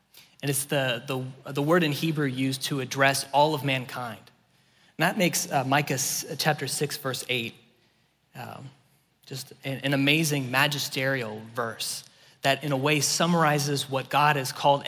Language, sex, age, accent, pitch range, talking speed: English, male, 20-39, American, 125-150 Hz, 155 wpm